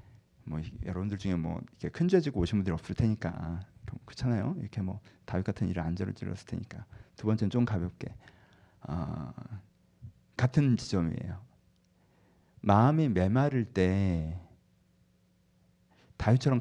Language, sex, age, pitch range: Korean, male, 40-59, 105-155 Hz